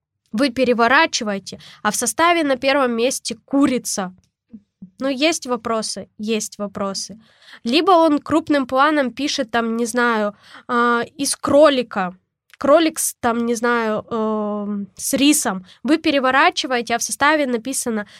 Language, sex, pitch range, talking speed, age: Russian, female, 225-280 Hz, 125 wpm, 10-29